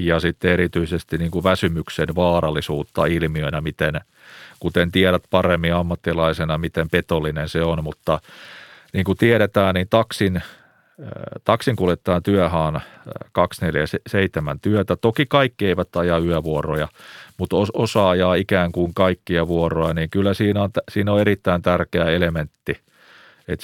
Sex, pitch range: male, 80-95 Hz